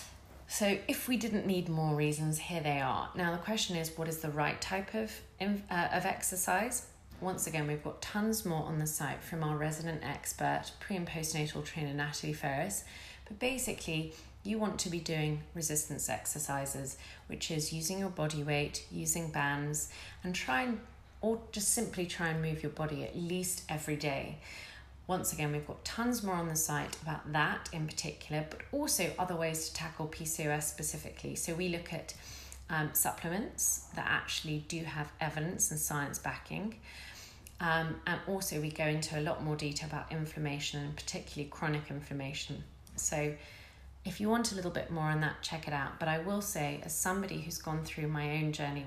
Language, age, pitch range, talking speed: English, 30-49, 145-170 Hz, 185 wpm